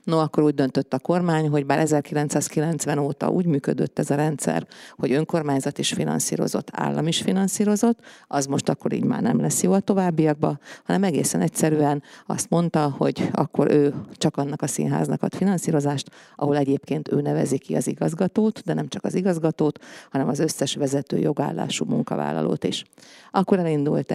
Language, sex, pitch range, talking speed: Hungarian, female, 140-160 Hz, 165 wpm